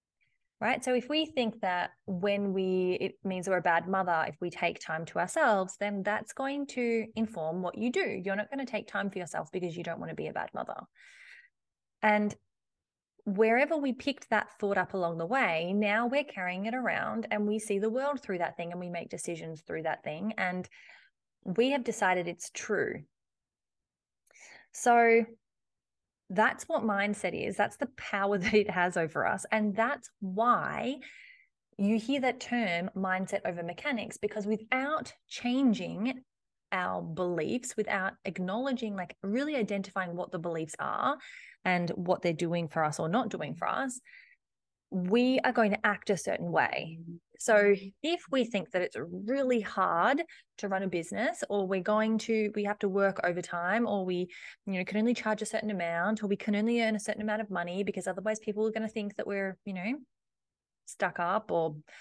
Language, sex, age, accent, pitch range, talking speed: English, female, 20-39, Australian, 185-240 Hz, 185 wpm